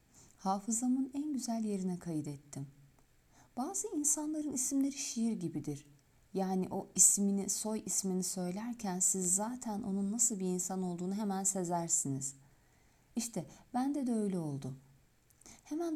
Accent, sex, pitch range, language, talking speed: native, female, 160-225 Hz, Turkish, 120 wpm